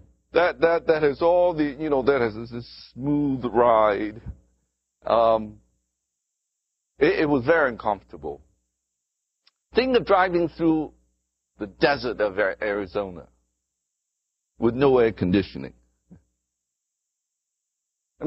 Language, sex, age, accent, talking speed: English, male, 50-69, American, 105 wpm